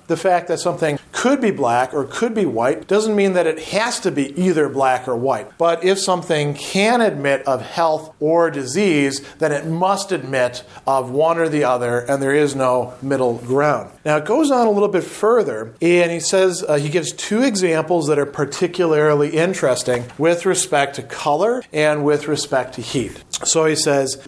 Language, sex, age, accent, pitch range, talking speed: English, male, 40-59, American, 140-175 Hz, 195 wpm